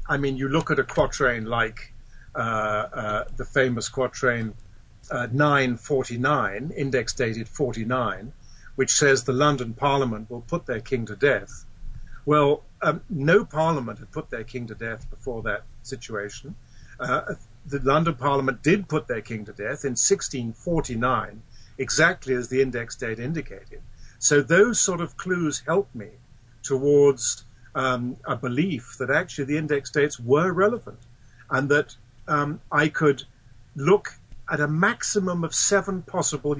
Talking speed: 150 wpm